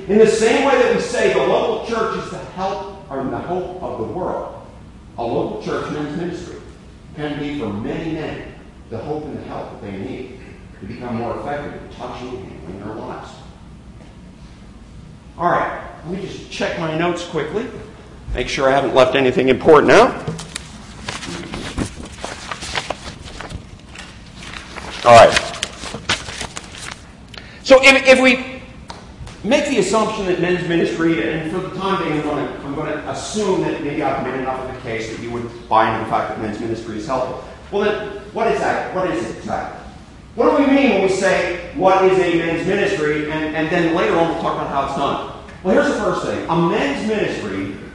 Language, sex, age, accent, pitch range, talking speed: English, male, 50-69, American, 135-220 Hz, 185 wpm